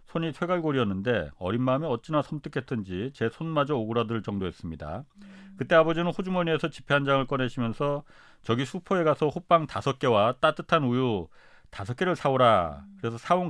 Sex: male